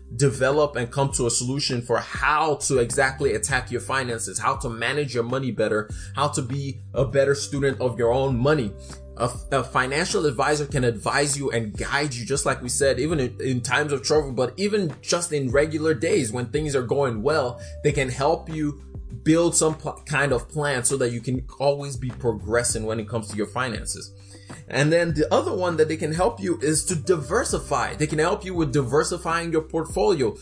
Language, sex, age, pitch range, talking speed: English, male, 20-39, 120-155 Hz, 205 wpm